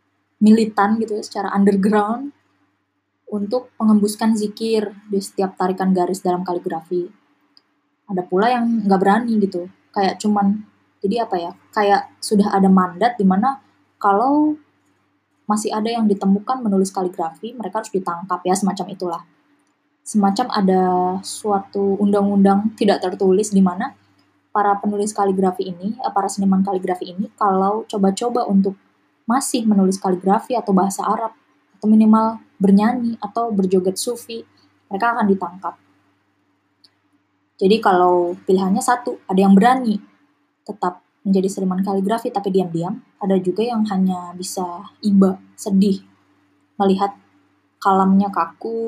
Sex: female